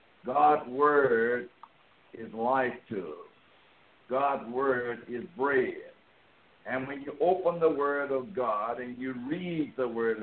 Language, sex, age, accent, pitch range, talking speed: English, male, 60-79, American, 125-155 Hz, 135 wpm